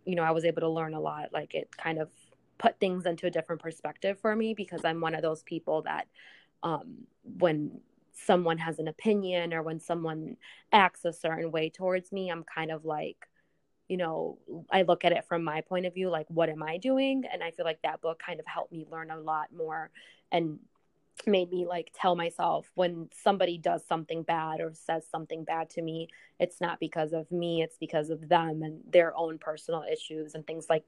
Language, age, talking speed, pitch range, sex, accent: English, 20-39, 215 wpm, 160-180 Hz, female, American